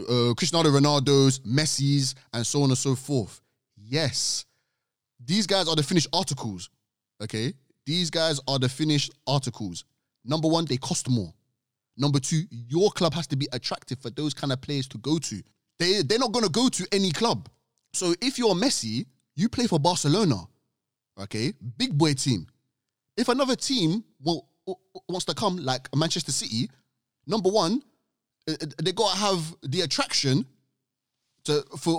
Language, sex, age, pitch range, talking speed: English, male, 20-39, 130-190 Hz, 160 wpm